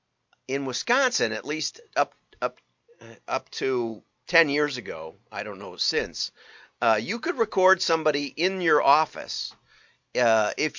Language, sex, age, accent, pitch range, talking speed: English, male, 50-69, American, 110-165 Hz, 140 wpm